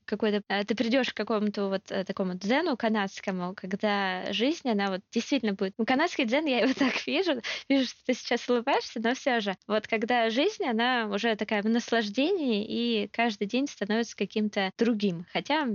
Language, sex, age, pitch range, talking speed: Russian, female, 20-39, 205-245 Hz, 170 wpm